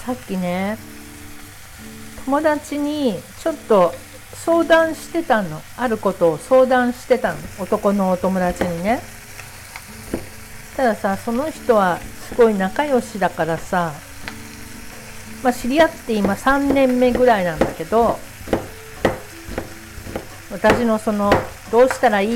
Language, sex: Japanese, female